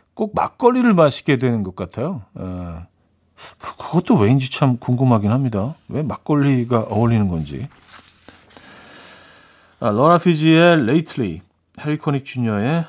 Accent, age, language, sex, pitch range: native, 50-69, Korean, male, 100-155 Hz